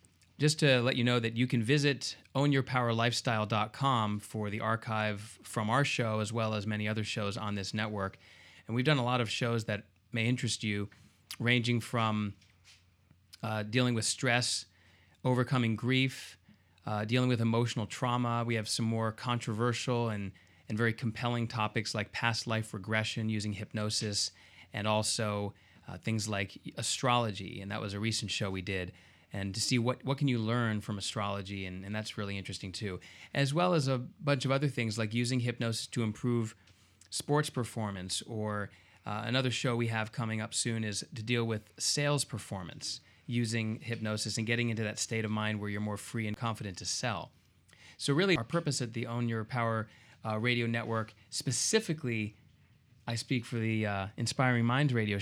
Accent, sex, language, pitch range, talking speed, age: American, male, English, 105-120 Hz, 175 wpm, 30-49